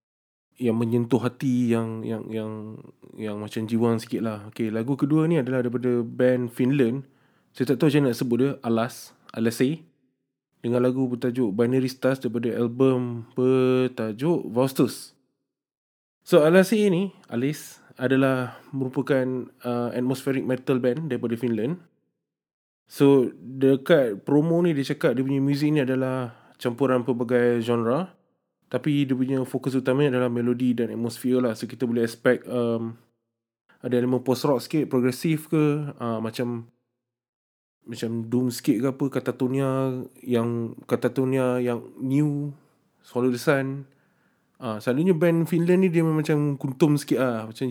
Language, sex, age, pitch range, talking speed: Malay, male, 20-39, 120-140 Hz, 140 wpm